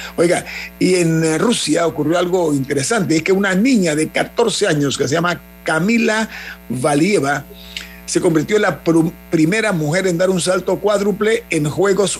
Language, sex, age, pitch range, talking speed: Spanish, male, 50-69, 135-190 Hz, 160 wpm